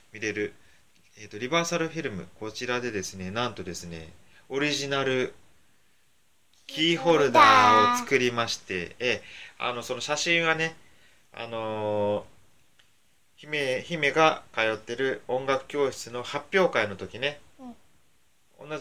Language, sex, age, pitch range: Japanese, male, 20-39, 95-140 Hz